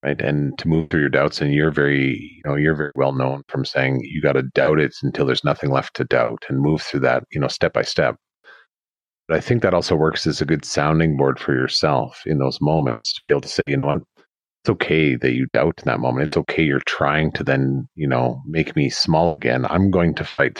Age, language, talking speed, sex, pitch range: 40-59, English, 250 wpm, male, 70-80 Hz